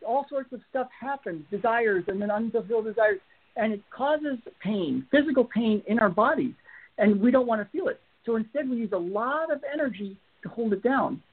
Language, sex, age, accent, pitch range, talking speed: English, male, 60-79, American, 200-250 Hz, 200 wpm